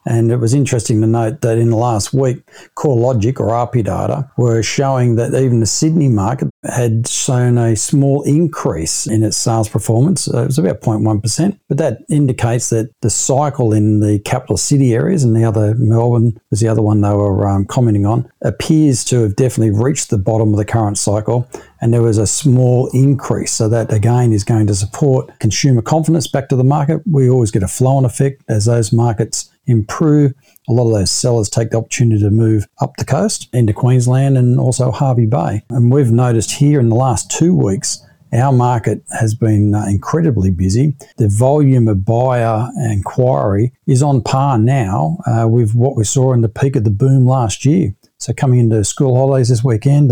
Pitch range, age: 110-135 Hz, 50-69